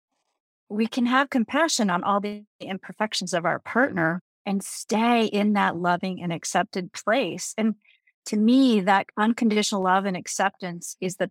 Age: 40-59